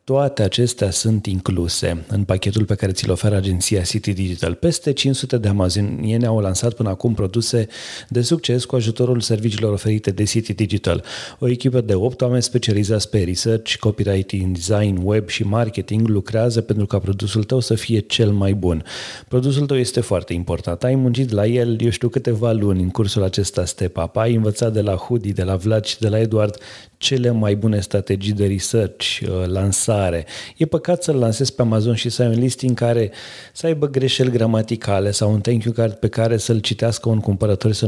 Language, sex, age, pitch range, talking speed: Romanian, male, 30-49, 100-120 Hz, 190 wpm